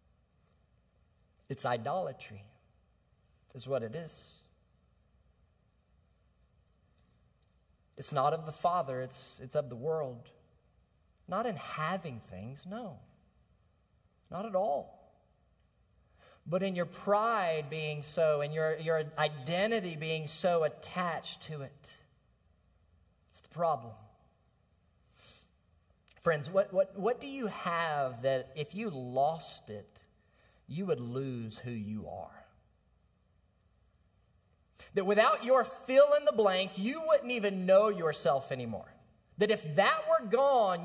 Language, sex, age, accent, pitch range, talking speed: English, male, 40-59, American, 115-185 Hz, 115 wpm